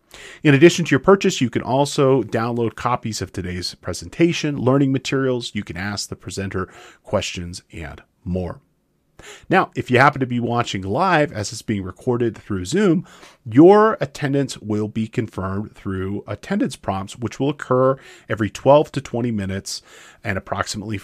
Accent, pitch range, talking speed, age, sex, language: American, 100-140 Hz, 155 wpm, 40-59, male, English